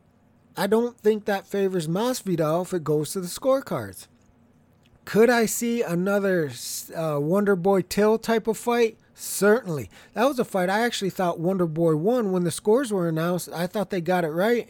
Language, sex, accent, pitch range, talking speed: English, male, American, 150-205 Hz, 170 wpm